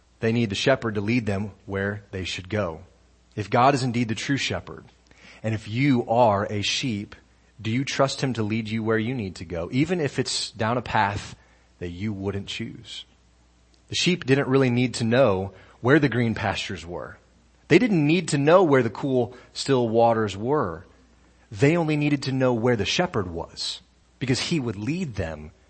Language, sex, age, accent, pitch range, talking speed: English, male, 30-49, American, 95-120 Hz, 195 wpm